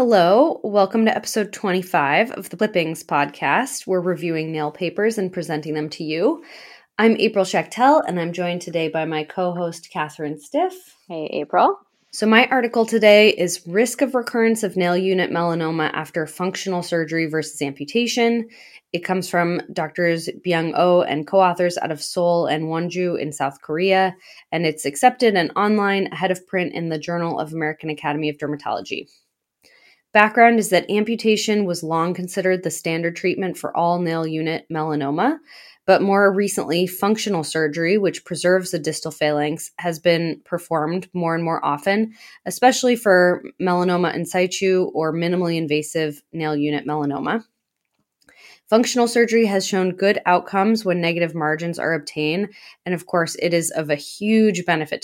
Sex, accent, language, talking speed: female, American, English, 155 wpm